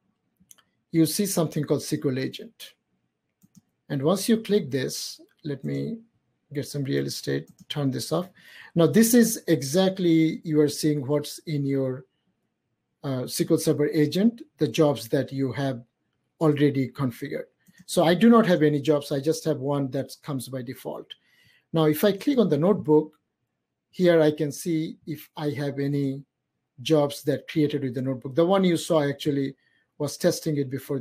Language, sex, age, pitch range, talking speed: English, male, 50-69, 135-165 Hz, 165 wpm